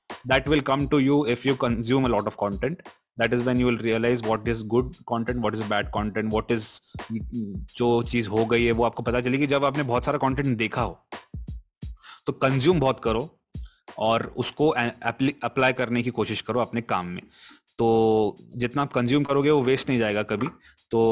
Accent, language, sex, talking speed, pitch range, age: native, Hindi, male, 195 wpm, 110-135 Hz, 20-39